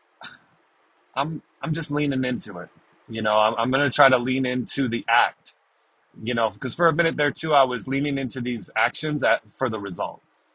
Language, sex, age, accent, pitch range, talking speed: English, male, 30-49, American, 115-145 Hz, 205 wpm